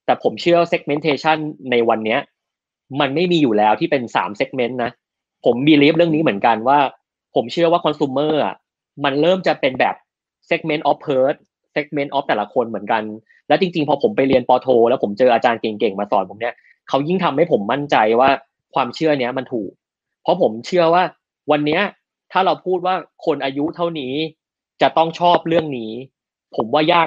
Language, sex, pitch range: Thai, male, 125-165 Hz